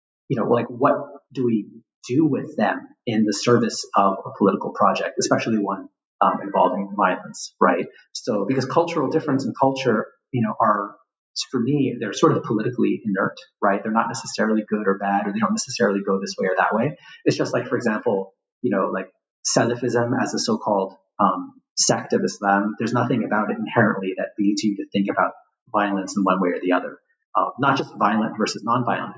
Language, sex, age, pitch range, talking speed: English, male, 30-49, 100-125 Hz, 195 wpm